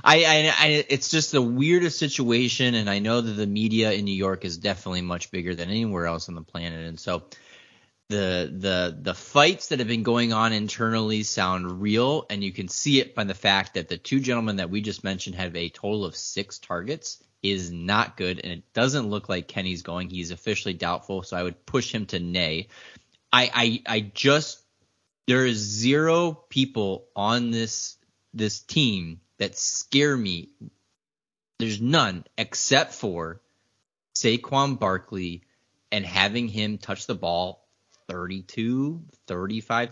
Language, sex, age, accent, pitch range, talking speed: English, male, 30-49, American, 95-125 Hz, 170 wpm